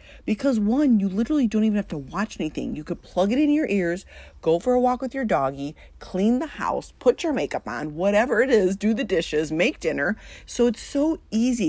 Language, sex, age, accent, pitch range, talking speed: English, female, 30-49, American, 160-230 Hz, 220 wpm